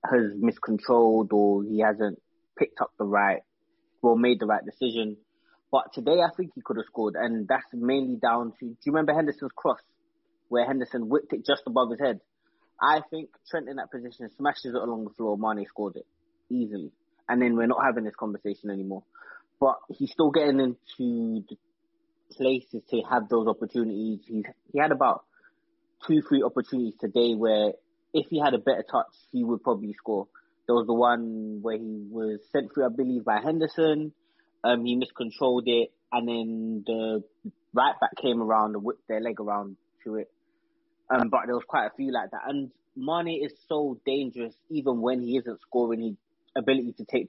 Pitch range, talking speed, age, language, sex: 110-170 Hz, 185 wpm, 20-39, English, male